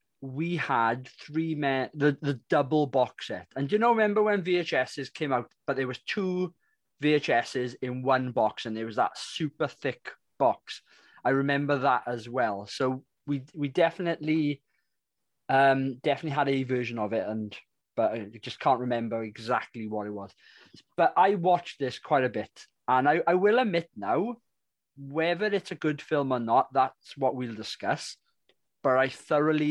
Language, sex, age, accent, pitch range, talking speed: English, male, 20-39, British, 120-155 Hz, 170 wpm